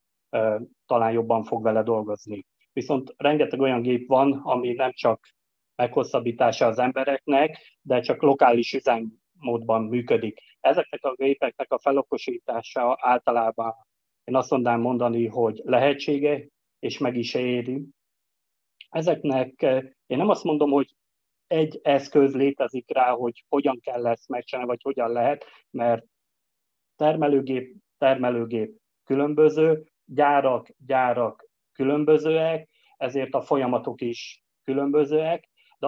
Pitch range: 120-145 Hz